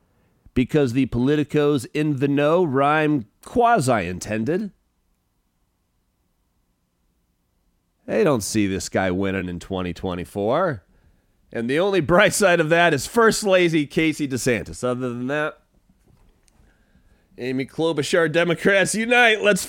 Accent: American